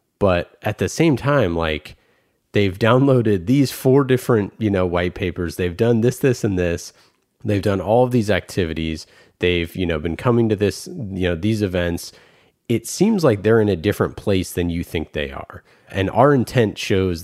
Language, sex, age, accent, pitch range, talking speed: English, male, 30-49, American, 90-115 Hz, 190 wpm